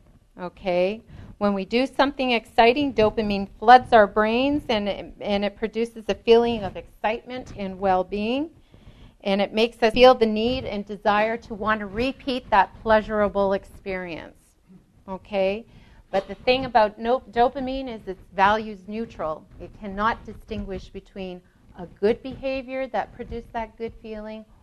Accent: American